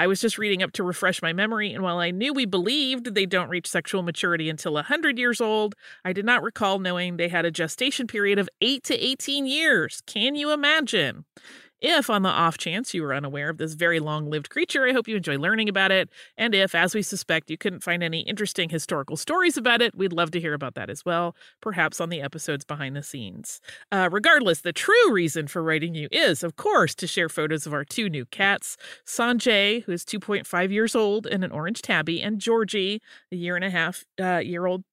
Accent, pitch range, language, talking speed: American, 165-215 Hz, English, 215 wpm